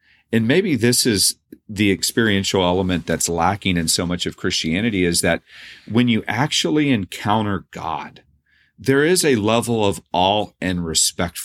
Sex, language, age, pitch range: male, English, 40-59, 85-110 Hz